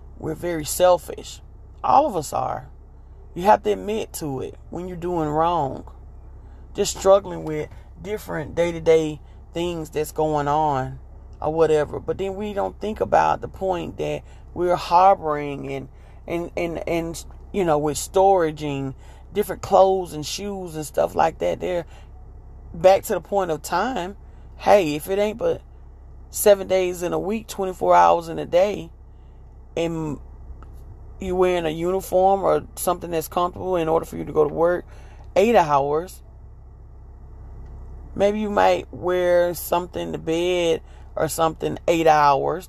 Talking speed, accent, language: 150 wpm, American, English